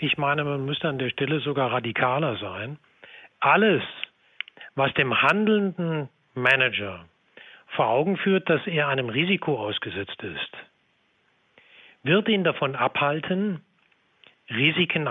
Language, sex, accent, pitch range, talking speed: German, male, German, 135-170 Hz, 115 wpm